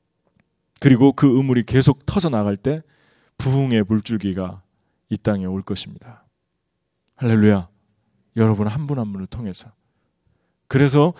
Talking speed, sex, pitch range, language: 105 wpm, male, 100-140 Hz, English